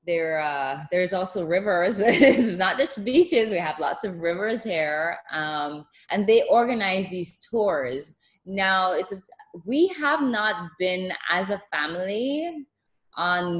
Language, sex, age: English, female, 20-39